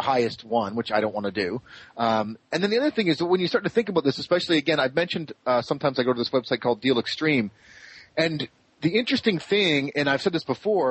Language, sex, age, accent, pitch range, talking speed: English, male, 30-49, American, 130-170 Hz, 255 wpm